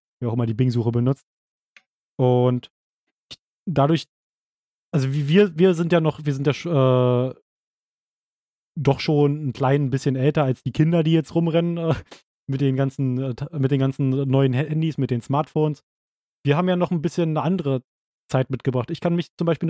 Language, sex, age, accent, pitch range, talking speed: German, male, 30-49, German, 130-160 Hz, 175 wpm